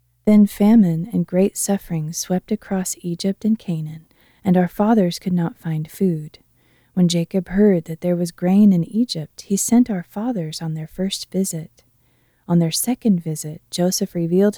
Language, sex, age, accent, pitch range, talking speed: English, female, 30-49, American, 160-200 Hz, 165 wpm